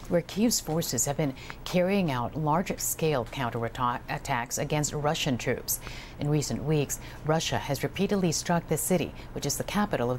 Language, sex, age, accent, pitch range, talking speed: English, female, 50-69, American, 140-180 Hz, 155 wpm